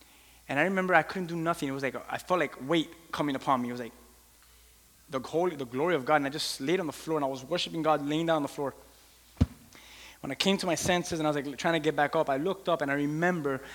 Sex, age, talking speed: male, 20-39, 285 wpm